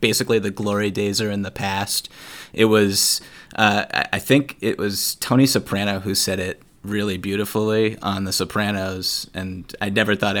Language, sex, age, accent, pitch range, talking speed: English, male, 30-49, American, 100-120 Hz, 165 wpm